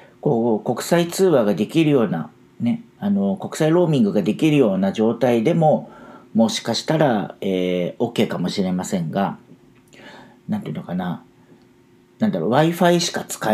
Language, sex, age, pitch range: Japanese, male, 40-59, 105-165 Hz